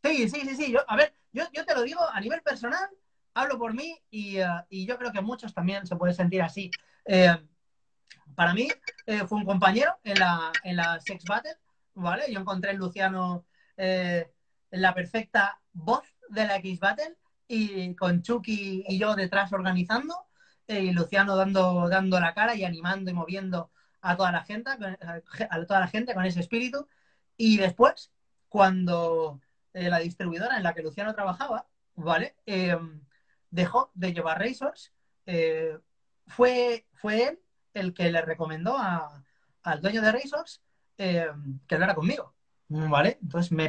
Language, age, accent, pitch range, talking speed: Spanish, 30-49, Spanish, 170-220 Hz, 170 wpm